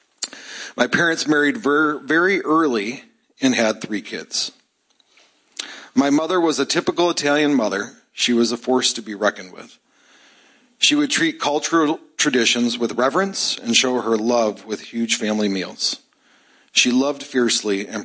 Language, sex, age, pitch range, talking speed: English, male, 40-59, 110-150 Hz, 145 wpm